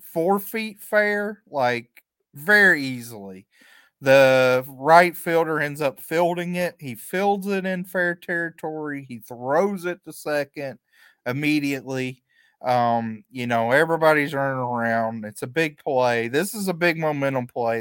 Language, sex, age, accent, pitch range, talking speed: English, male, 30-49, American, 125-180 Hz, 140 wpm